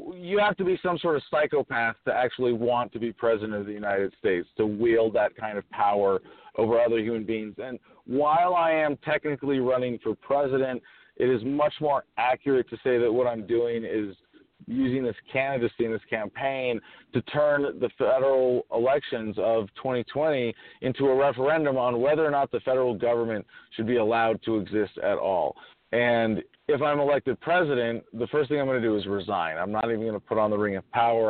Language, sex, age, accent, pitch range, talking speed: English, male, 40-59, American, 105-135 Hz, 195 wpm